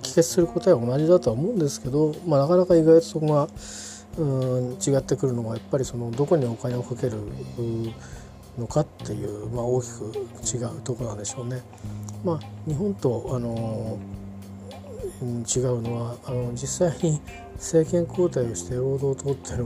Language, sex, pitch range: Japanese, male, 110-140 Hz